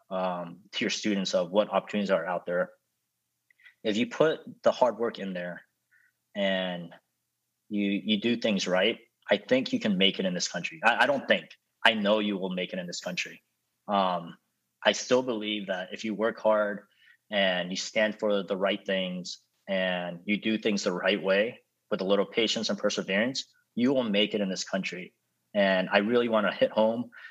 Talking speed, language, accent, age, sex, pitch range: 195 wpm, English, American, 20-39, male, 95-110 Hz